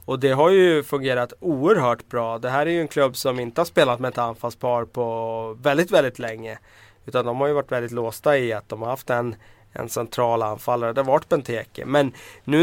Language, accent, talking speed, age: Swedish, native, 220 wpm, 20-39